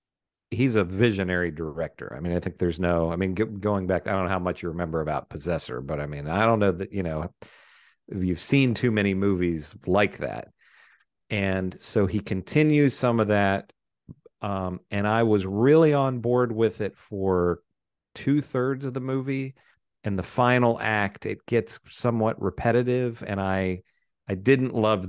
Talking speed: 175 wpm